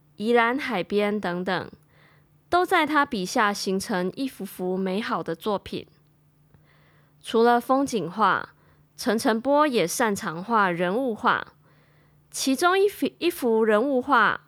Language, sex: Chinese, female